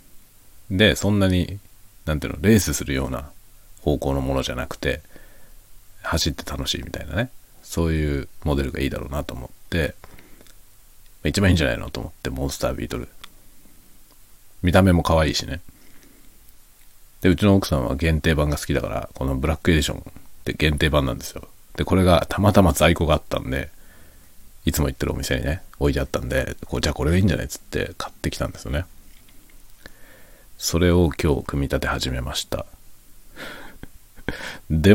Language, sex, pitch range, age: Japanese, male, 75-100 Hz, 40-59